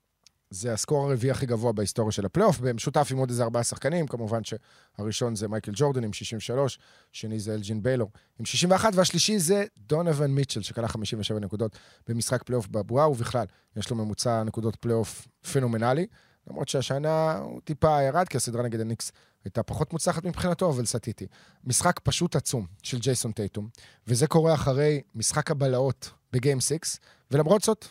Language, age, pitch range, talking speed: Hebrew, 30-49, 115-145 Hz, 140 wpm